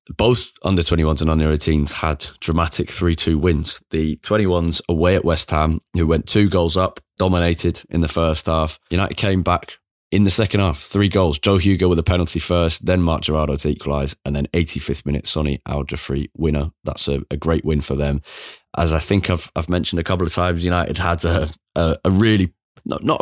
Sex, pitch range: male, 75-90 Hz